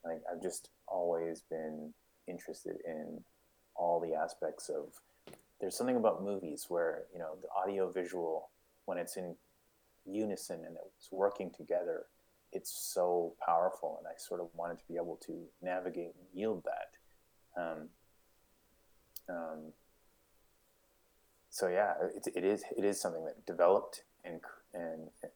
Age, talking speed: 30-49, 135 wpm